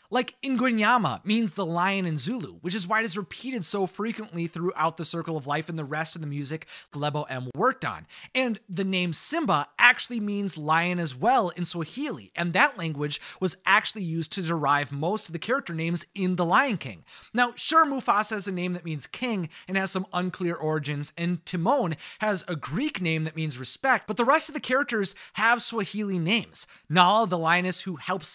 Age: 30-49